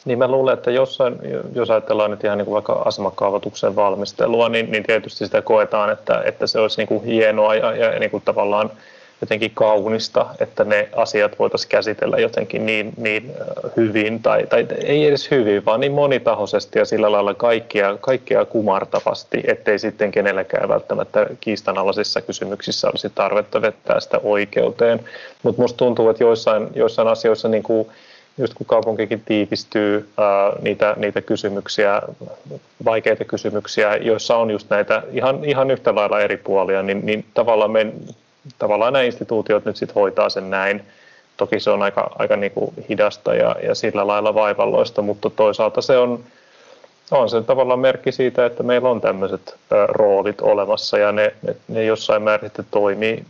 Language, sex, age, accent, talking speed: Finnish, male, 30-49, native, 160 wpm